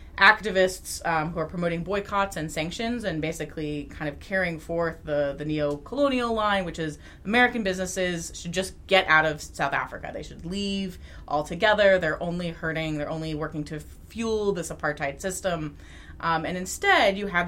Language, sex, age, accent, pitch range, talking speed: English, female, 20-39, American, 145-185 Hz, 170 wpm